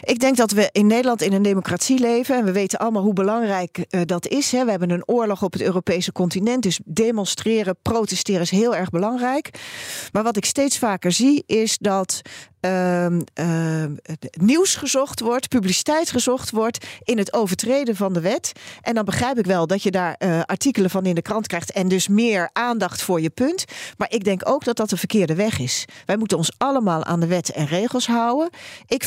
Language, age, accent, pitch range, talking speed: Dutch, 40-59, Dutch, 175-235 Hz, 205 wpm